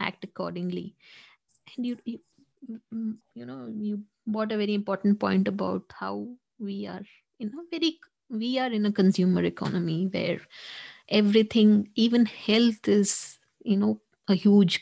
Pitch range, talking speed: 195-235 Hz, 140 wpm